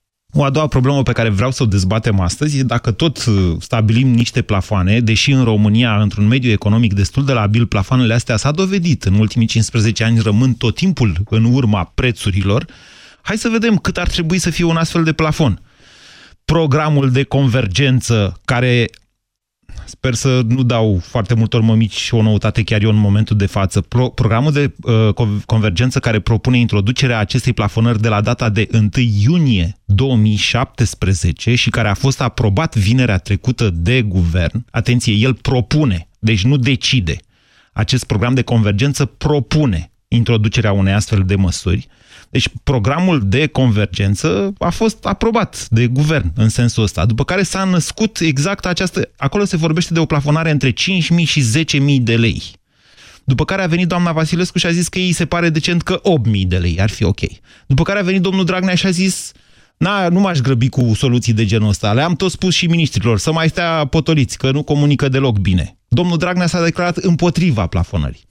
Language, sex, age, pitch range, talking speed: Romanian, male, 30-49, 105-155 Hz, 175 wpm